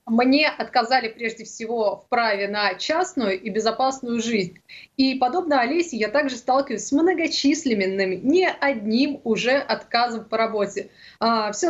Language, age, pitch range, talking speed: Russian, 20-39, 225-275 Hz, 135 wpm